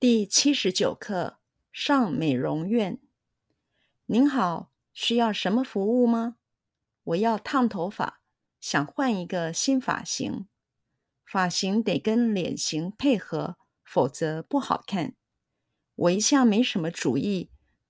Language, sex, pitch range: Chinese, female, 145-235 Hz